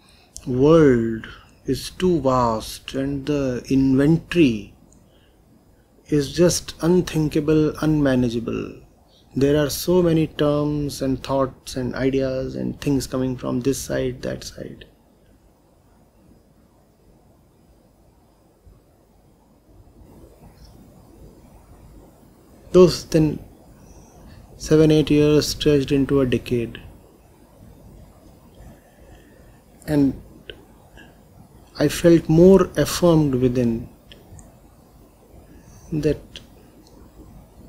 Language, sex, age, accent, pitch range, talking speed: English, male, 30-49, Indian, 120-150 Hz, 70 wpm